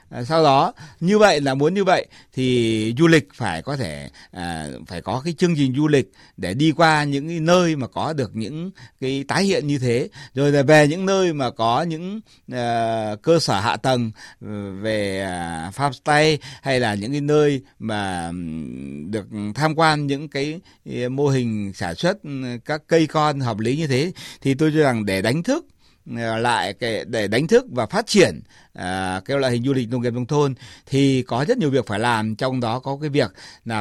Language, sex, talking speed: Vietnamese, male, 200 wpm